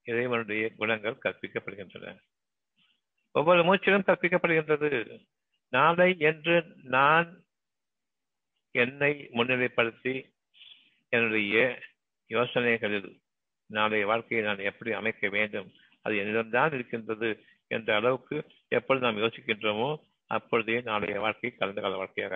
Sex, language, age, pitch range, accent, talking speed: male, Tamil, 60-79, 110-150 Hz, native, 90 wpm